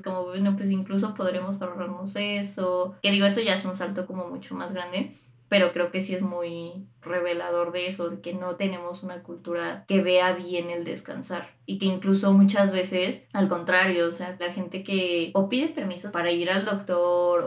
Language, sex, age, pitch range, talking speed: Spanish, female, 20-39, 180-205 Hz, 195 wpm